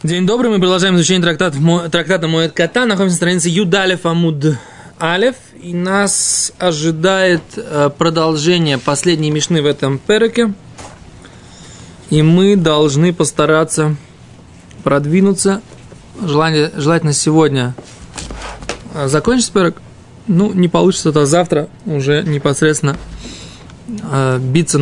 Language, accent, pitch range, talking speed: Russian, native, 150-190 Hz, 110 wpm